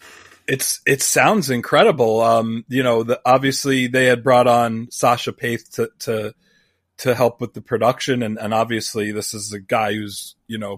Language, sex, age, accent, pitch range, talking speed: English, male, 30-49, American, 110-135 Hz, 180 wpm